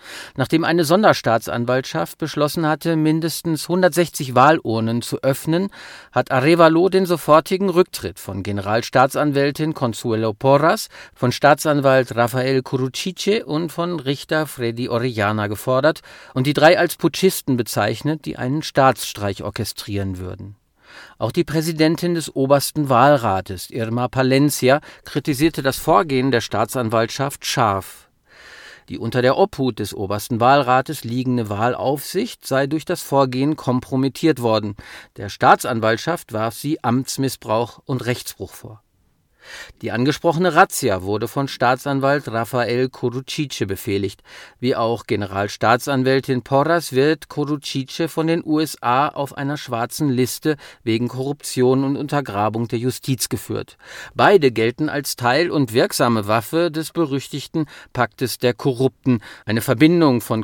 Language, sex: German, male